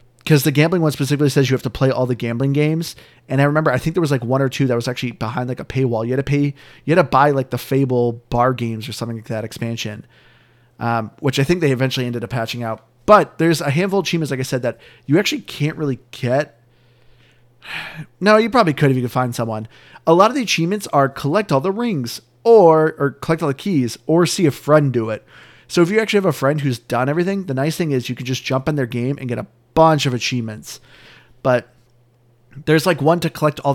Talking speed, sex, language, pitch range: 250 wpm, male, English, 125-155 Hz